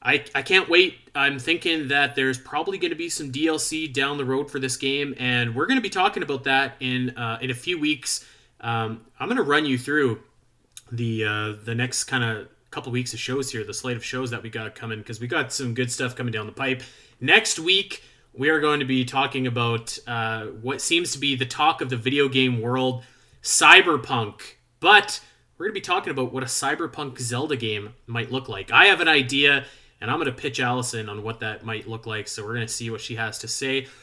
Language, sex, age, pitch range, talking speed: English, male, 30-49, 115-140 Hz, 235 wpm